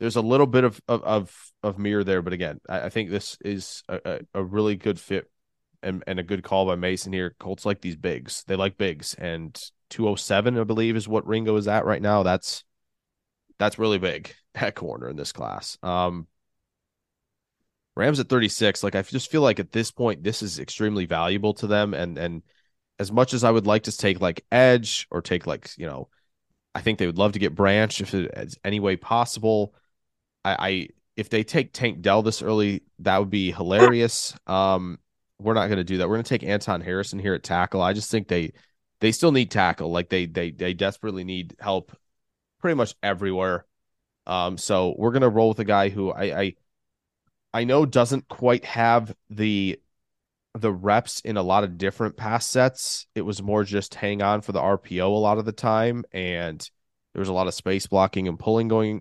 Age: 20-39